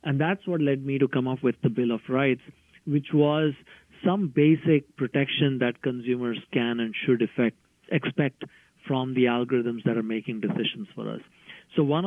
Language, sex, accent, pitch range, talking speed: English, male, Indian, 125-165 Hz, 175 wpm